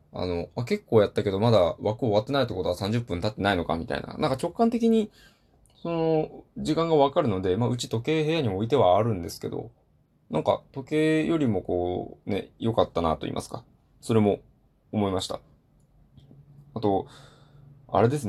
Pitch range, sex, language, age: 95-145 Hz, male, Japanese, 20-39